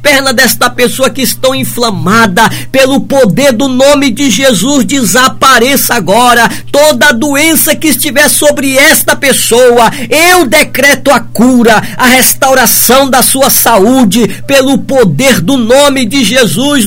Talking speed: 130 wpm